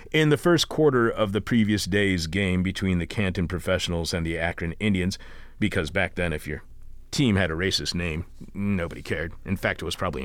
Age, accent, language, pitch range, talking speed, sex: 40-59, American, English, 90-125 Hz, 200 wpm, male